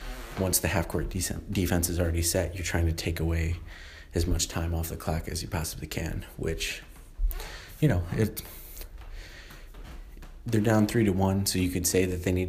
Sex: male